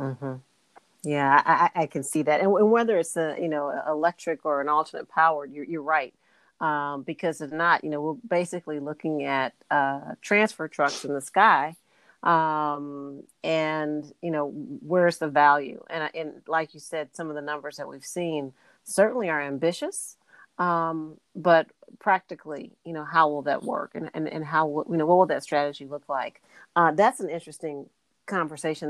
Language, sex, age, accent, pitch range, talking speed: English, female, 40-59, American, 150-180 Hz, 180 wpm